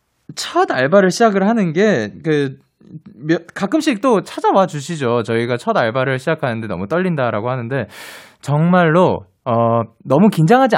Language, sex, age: Korean, male, 20-39